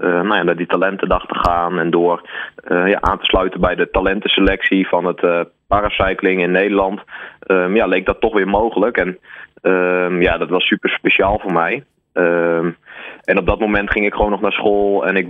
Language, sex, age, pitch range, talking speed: Dutch, male, 20-39, 90-100 Hz, 210 wpm